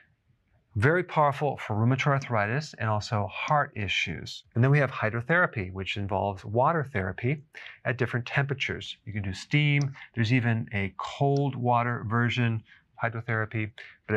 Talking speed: 140 wpm